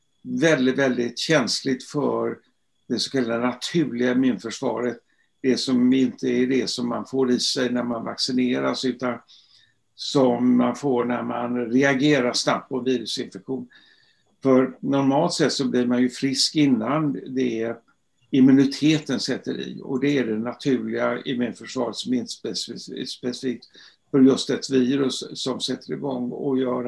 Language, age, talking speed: Swedish, 60-79, 145 wpm